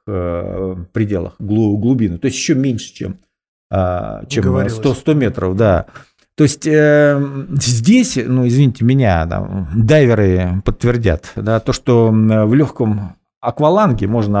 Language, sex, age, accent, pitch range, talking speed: Russian, male, 50-69, native, 100-130 Hz, 115 wpm